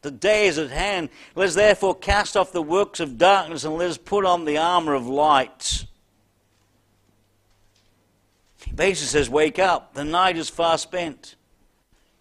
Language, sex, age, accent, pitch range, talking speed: English, male, 60-79, British, 105-175 Hz, 160 wpm